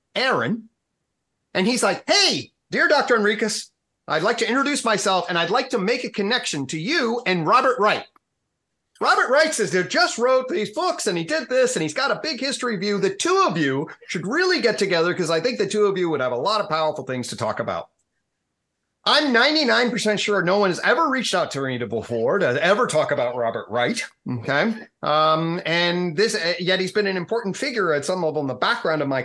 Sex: male